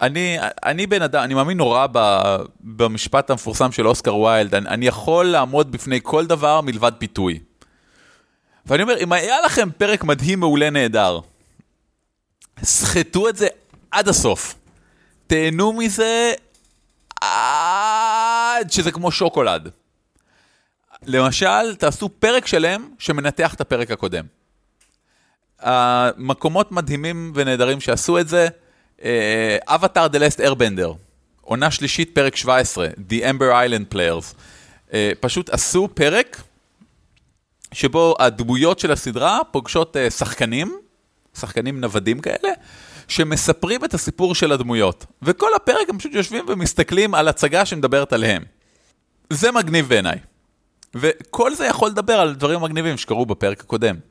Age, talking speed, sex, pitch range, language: 30-49, 120 wpm, male, 125-180 Hz, Hebrew